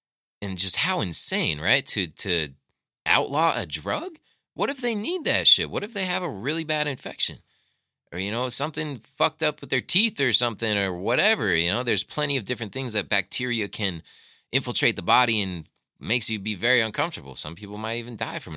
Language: English